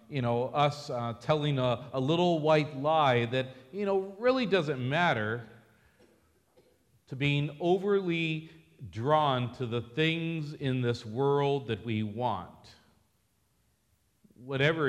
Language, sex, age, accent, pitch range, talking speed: English, male, 50-69, American, 110-160 Hz, 120 wpm